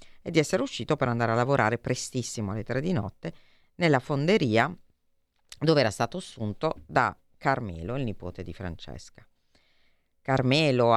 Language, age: Italian, 40-59